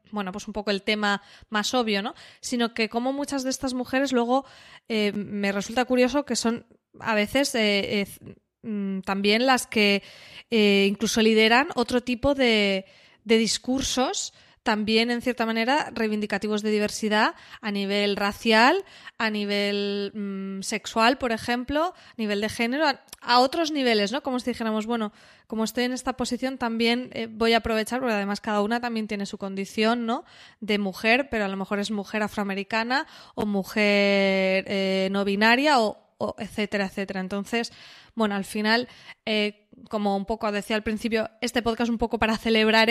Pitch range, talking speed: 205-240 Hz, 170 wpm